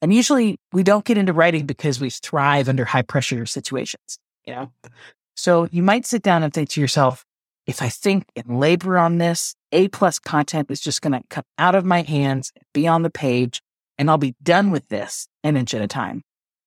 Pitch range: 135-190 Hz